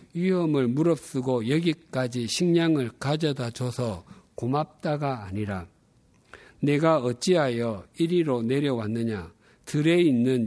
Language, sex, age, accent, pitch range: Korean, male, 50-69, native, 120-155 Hz